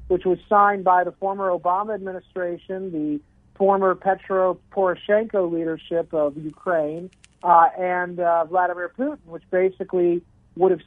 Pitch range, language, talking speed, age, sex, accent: 175-210 Hz, English, 135 wpm, 50-69, male, American